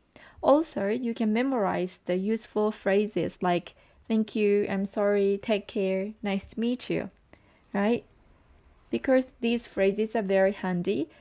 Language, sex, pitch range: Japanese, female, 190-230 Hz